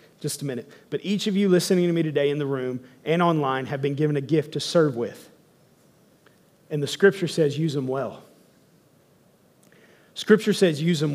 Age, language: 30-49, English